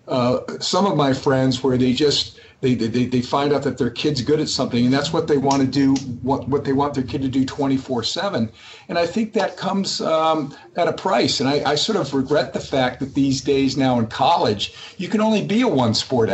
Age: 50-69